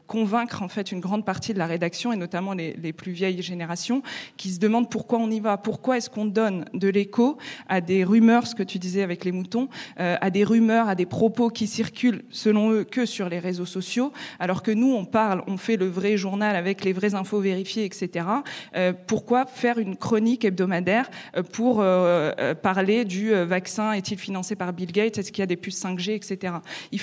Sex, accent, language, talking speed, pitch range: female, French, French, 215 wpm, 185-225 Hz